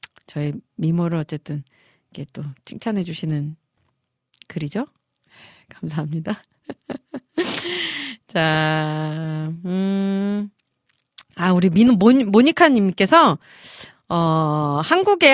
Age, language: 30-49, Korean